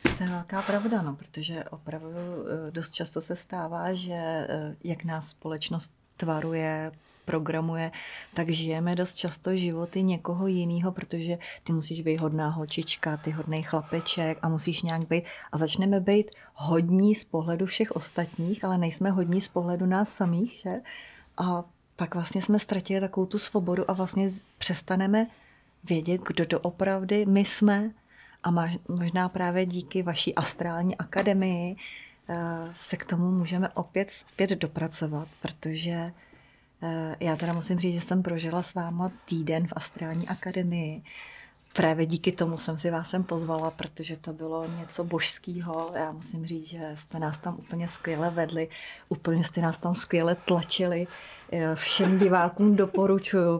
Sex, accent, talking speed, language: female, native, 145 wpm, Czech